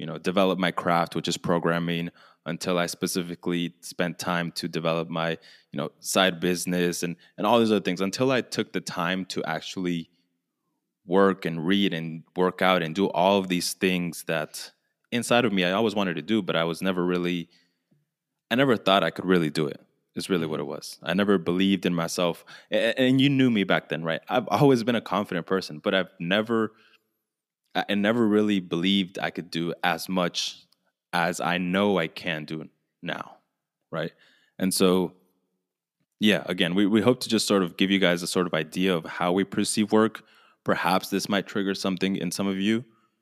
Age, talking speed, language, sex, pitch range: 20-39, 195 wpm, English, male, 85-100 Hz